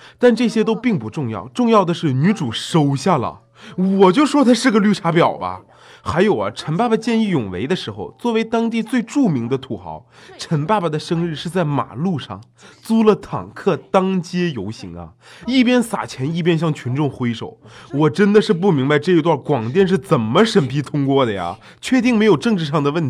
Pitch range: 140-220 Hz